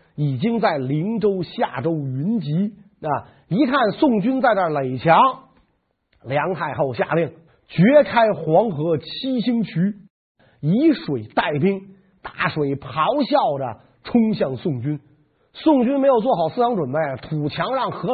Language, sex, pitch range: Chinese, male, 145-225 Hz